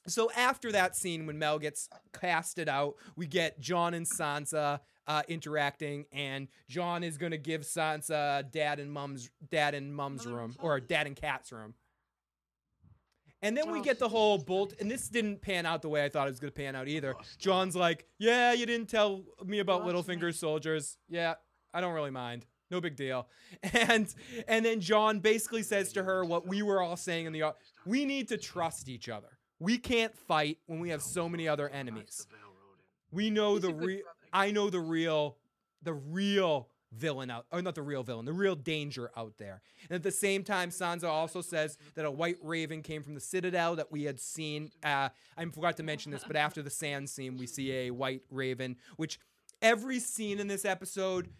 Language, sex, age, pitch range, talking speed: English, male, 20-39, 140-185 Hz, 195 wpm